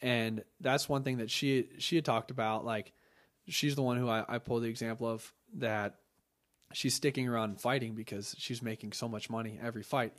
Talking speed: 200 wpm